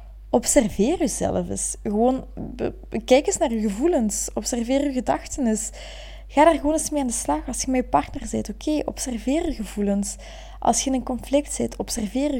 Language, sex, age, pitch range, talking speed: Dutch, female, 20-39, 195-260 Hz, 185 wpm